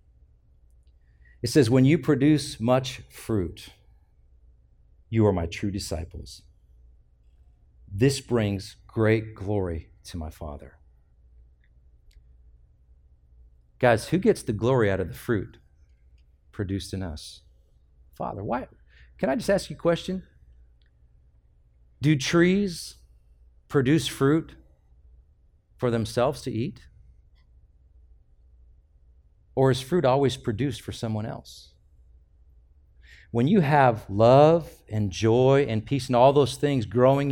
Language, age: English, 50-69